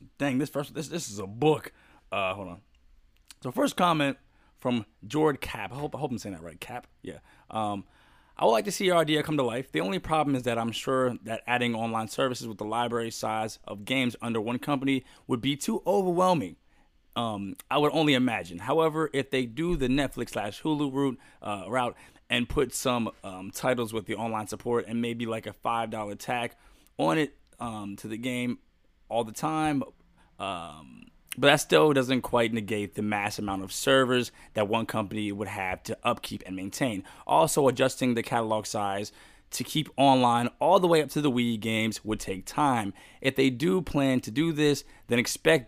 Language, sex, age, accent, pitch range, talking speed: English, male, 20-39, American, 110-140 Hz, 200 wpm